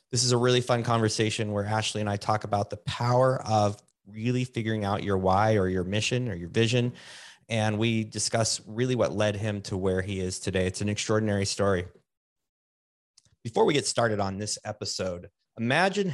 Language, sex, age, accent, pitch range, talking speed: English, male, 30-49, American, 100-125 Hz, 185 wpm